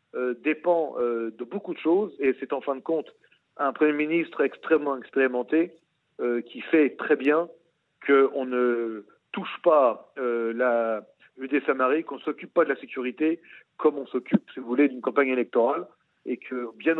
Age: 40-59